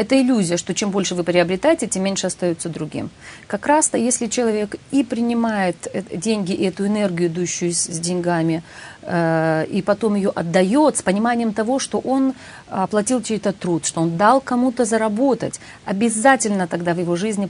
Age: 40-59